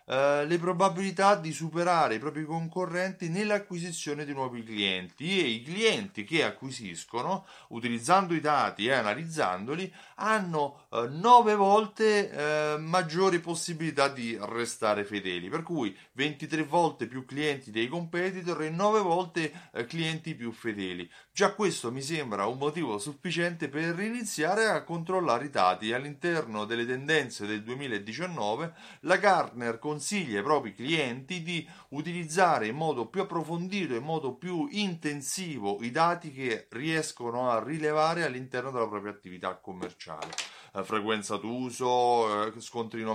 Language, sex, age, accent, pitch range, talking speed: Italian, male, 30-49, native, 120-175 Hz, 135 wpm